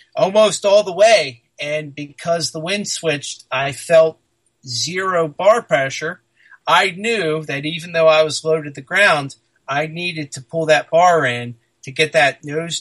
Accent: American